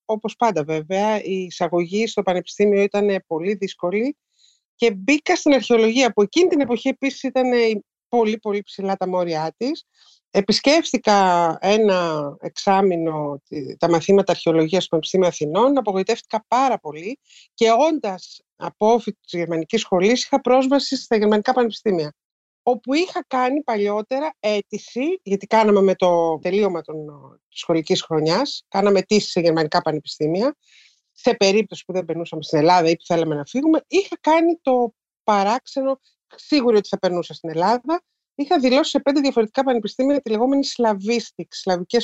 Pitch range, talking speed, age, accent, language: 180-255 Hz, 140 wpm, 50-69, native, Greek